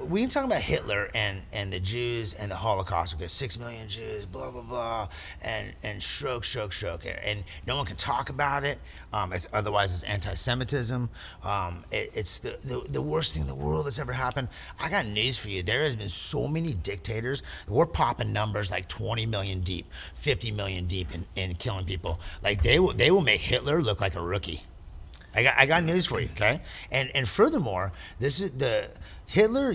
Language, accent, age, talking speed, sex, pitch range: English, American, 30-49, 205 wpm, male, 85-125 Hz